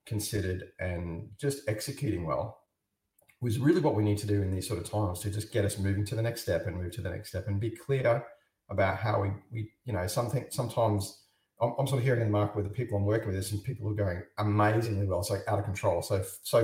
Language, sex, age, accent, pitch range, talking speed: English, male, 40-59, Australian, 100-115 Hz, 255 wpm